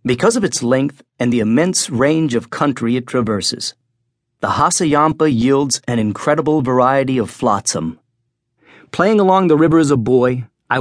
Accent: American